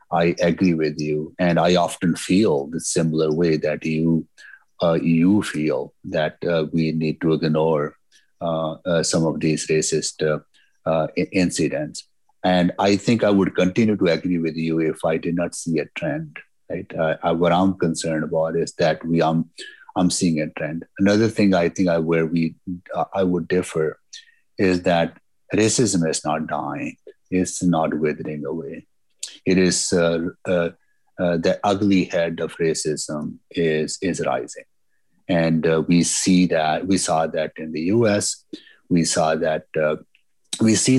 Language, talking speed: English, 165 wpm